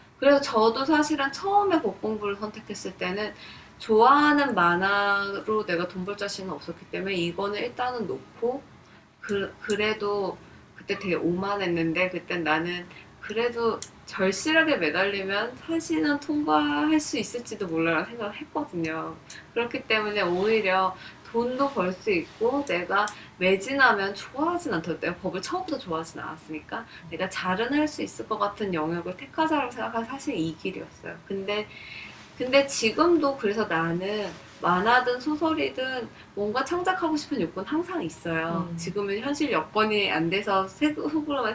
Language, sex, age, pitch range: Korean, female, 20-39, 175-275 Hz